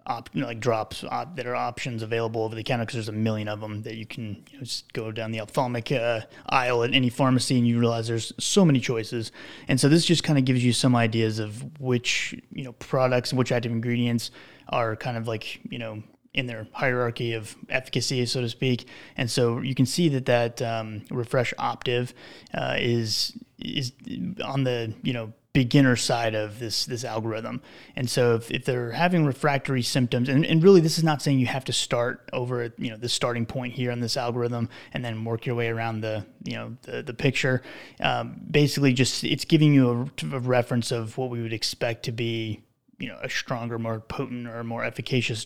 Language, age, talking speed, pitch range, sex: English, 20-39, 205 wpm, 115-130 Hz, male